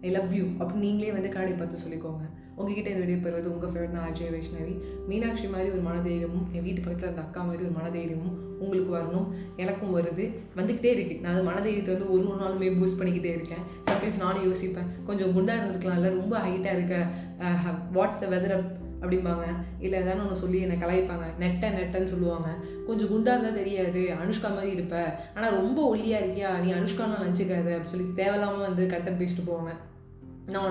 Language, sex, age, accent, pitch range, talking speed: Tamil, female, 20-39, native, 180-210 Hz, 165 wpm